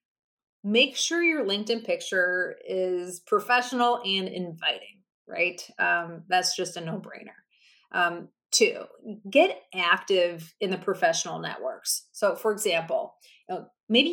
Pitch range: 180-245 Hz